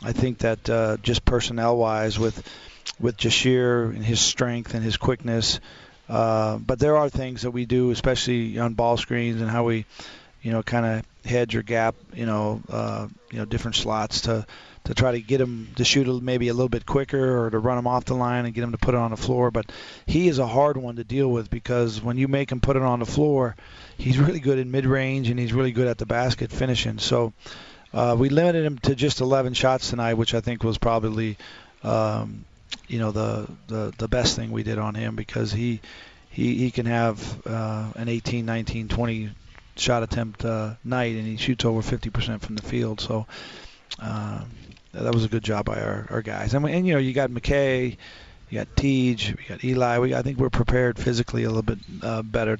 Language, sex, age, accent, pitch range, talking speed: English, male, 40-59, American, 110-125 Hz, 220 wpm